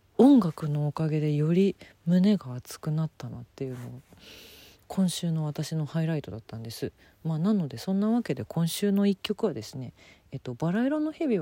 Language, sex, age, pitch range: Japanese, female, 40-59, 130-205 Hz